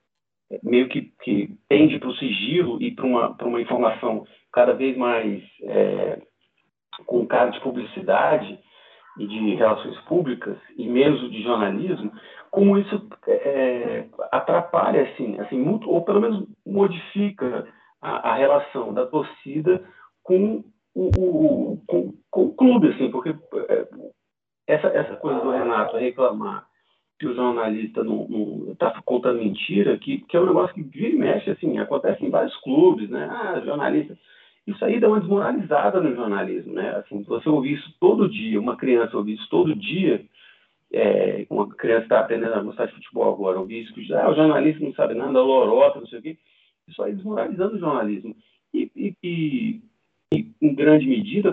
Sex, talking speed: male, 165 wpm